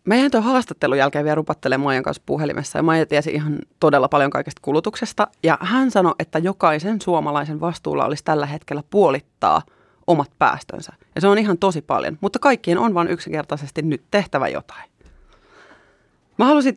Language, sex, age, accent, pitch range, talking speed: Finnish, female, 30-49, native, 150-210 Hz, 165 wpm